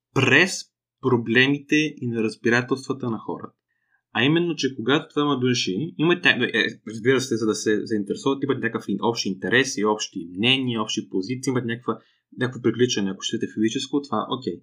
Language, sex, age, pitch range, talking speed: Bulgarian, male, 20-39, 110-140 Hz, 160 wpm